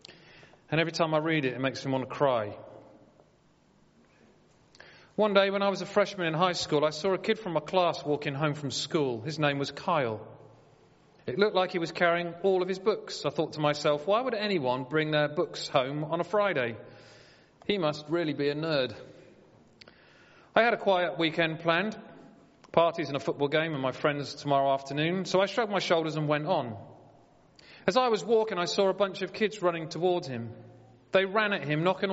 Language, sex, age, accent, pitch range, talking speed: English, male, 40-59, British, 145-190 Hz, 205 wpm